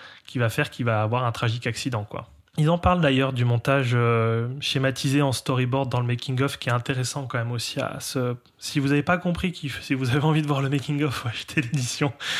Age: 20-39